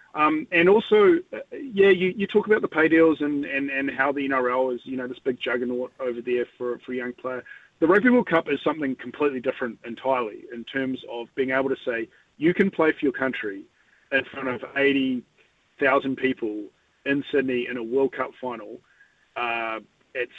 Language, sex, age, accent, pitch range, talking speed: English, male, 30-49, Australian, 125-165 Hz, 195 wpm